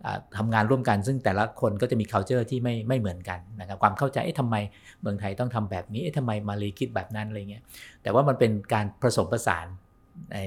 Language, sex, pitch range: Thai, male, 95-120 Hz